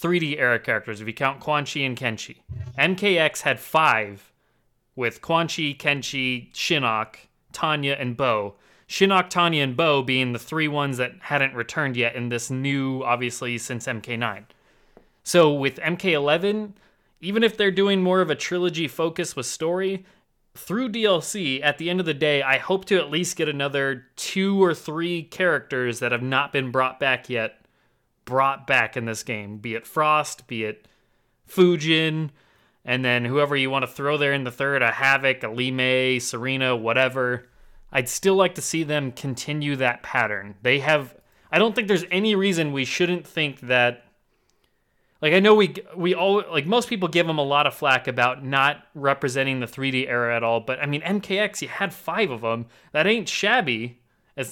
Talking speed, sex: 180 wpm, male